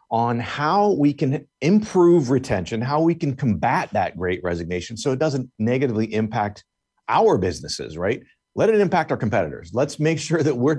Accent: American